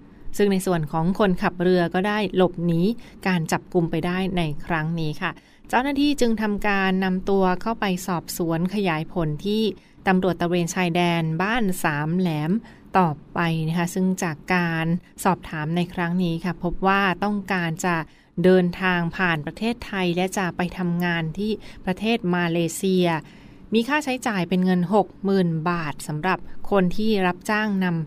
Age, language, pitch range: 20-39, Thai, 170-190 Hz